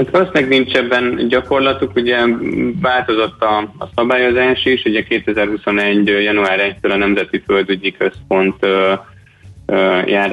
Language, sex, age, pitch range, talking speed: Hungarian, male, 20-39, 100-110 Hz, 120 wpm